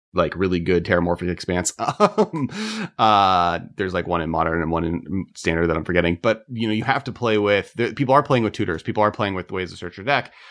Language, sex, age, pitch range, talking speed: English, male, 30-49, 90-135 Hz, 240 wpm